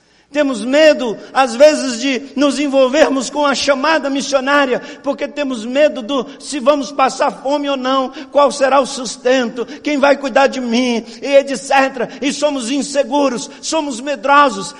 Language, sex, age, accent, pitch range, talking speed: Portuguese, male, 50-69, Brazilian, 265-295 Hz, 150 wpm